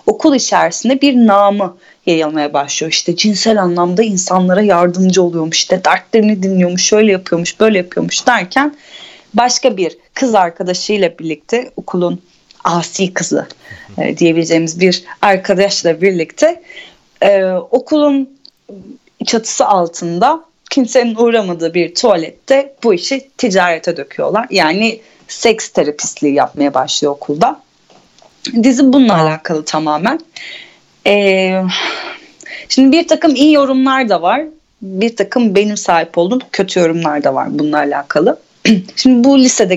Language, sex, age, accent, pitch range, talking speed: Turkish, female, 30-49, native, 170-250 Hz, 115 wpm